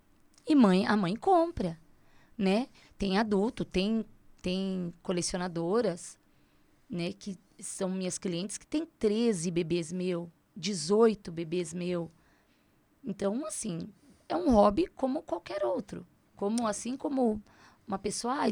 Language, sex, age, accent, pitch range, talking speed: Portuguese, female, 20-39, Brazilian, 175-220 Hz, 120 wpm